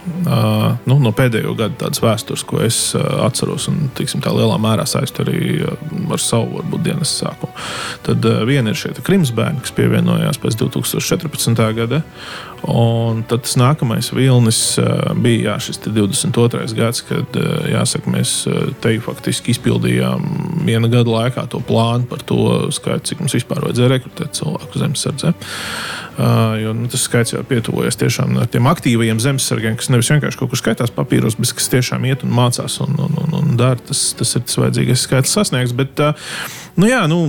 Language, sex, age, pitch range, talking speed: English, male, 20-39, 115-155 Hz, 170 wpm